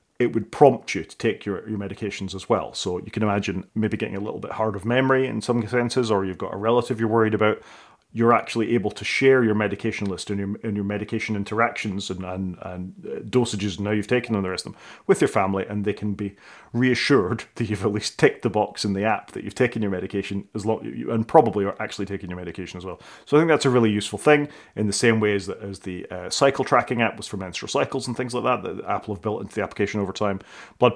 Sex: male